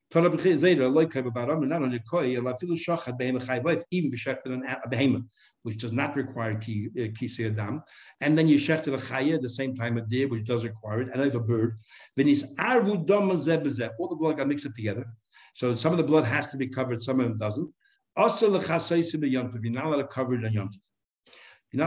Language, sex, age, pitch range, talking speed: English, male, 60-79, 125-160 Hz, 180 wpm